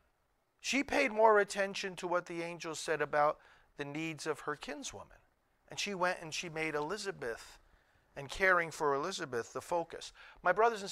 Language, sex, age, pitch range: English, male, 50-69, 140-185 Hz